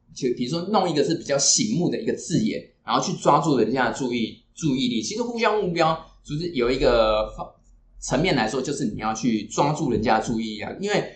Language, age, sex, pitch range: Chinese, 20-39, male, 110-160 Hz